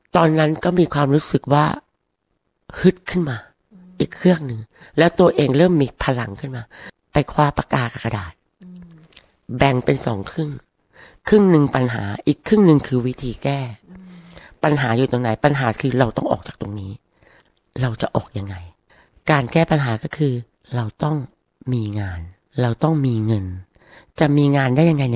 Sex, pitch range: female, 115-155 Hz